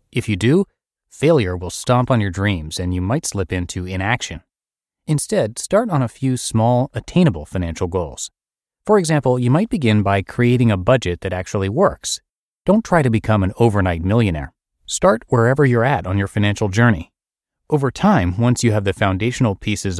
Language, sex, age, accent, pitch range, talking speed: English, male, 30-49, American, 95-135 Hz, 175 wpm